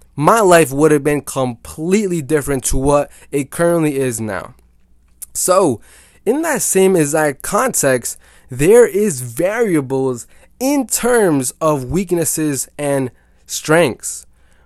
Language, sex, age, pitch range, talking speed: English, male, 20-39, 130-175 Hz, 115 wpm